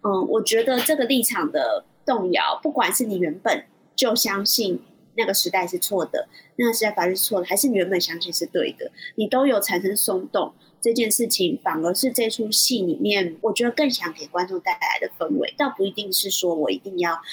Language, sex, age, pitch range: Chinese, female, 20-39, 190-260 Hz